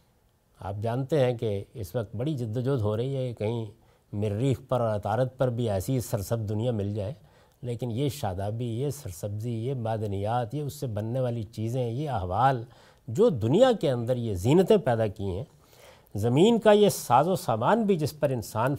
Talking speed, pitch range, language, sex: 185 wpm, 115-190 Hz, Urdu, male